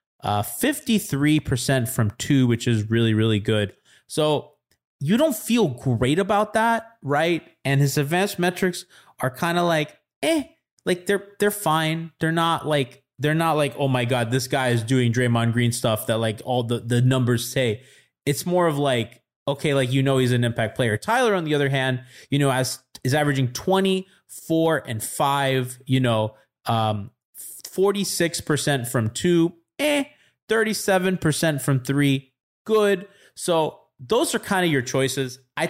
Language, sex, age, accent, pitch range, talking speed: English, male, 20-39, American, 125-175 Hz, 160 wpm